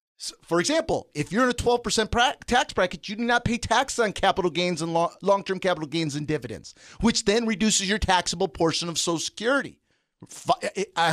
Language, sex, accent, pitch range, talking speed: English, male, American, 170-255 Hz, 185 wpm